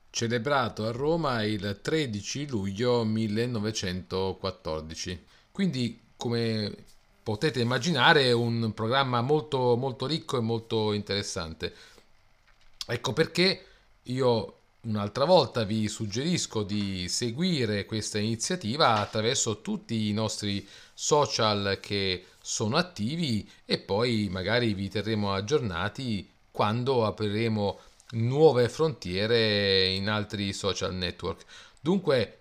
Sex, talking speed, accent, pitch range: male, 100 wpm, native, 100-125 Hz